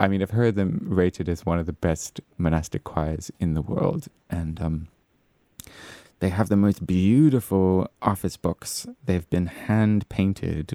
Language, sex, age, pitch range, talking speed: English, male, 20-39, 80-95 Hz, 155 wpm